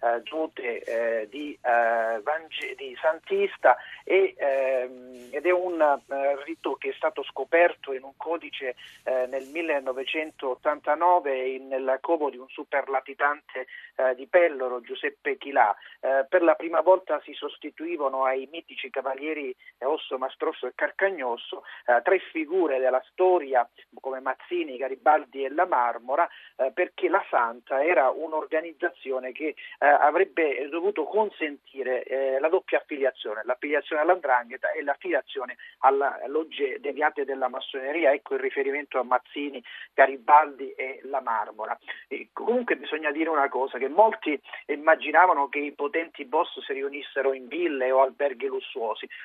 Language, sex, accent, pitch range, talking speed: Italian, male, native, 130-180 Hz, 135 wpm